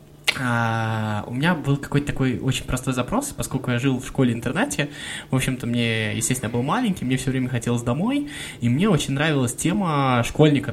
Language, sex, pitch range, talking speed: Russian, male, 105-130 Hz, 175 wpm